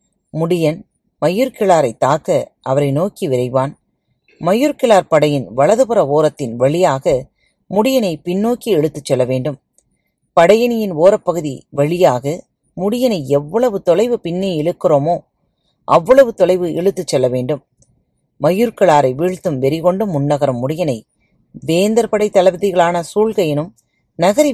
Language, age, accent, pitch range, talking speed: Tamil, 30-49, native, 140-200 Hz, 95 wpm